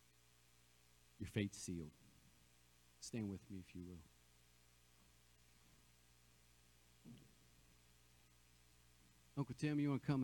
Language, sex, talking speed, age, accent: English, male, 90 wpm, 50-69, American